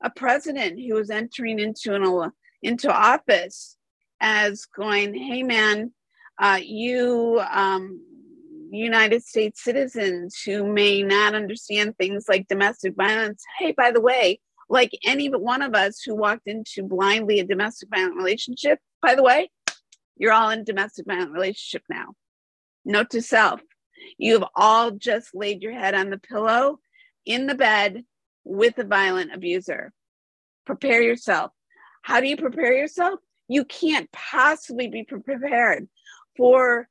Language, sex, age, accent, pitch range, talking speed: English, female, 50-69, American, 205-260 Hz, 140 wpm